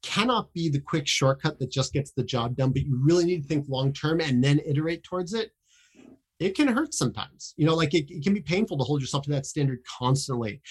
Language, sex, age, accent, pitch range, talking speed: English, male, 30-49, American, 125-160 Hz, 240 wpm